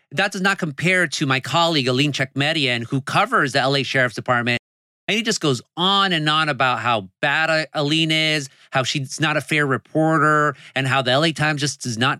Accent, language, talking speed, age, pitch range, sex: American, English, 200 wpm, 30-49, 145-195 Hz, male